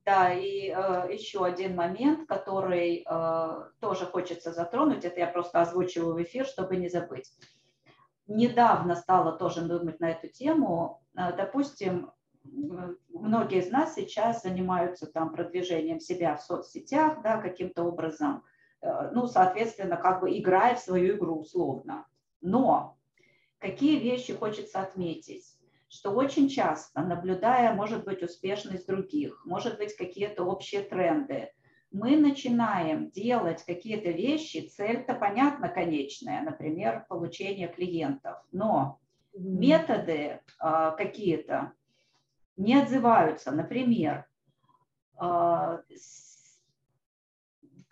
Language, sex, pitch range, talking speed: Russian, female, 170-230 Hz, 110 wpm